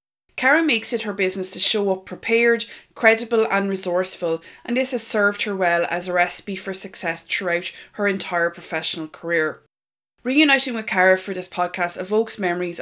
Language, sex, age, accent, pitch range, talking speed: English, female, 20-39, Irish, 180-230 Hz, 170 wpm